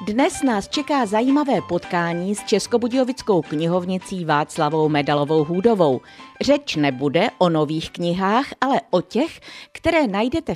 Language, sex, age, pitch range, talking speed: Czech, female, 50-69, 155-235 Hz, 120 wpm